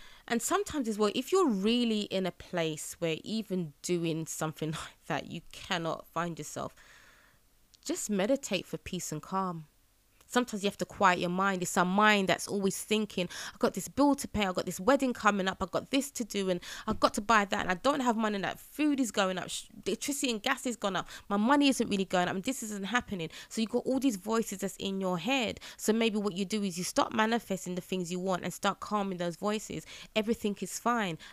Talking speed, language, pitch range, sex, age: 230 wpm, English, 175-215 Hz, female, 20-39